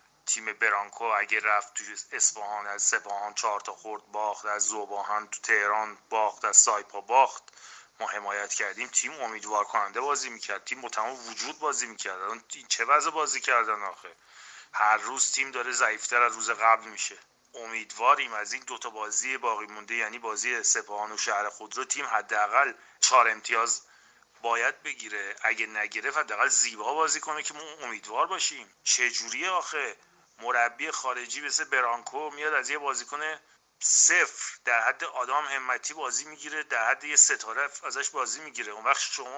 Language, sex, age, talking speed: Persian, male, 30-49, 160 wpm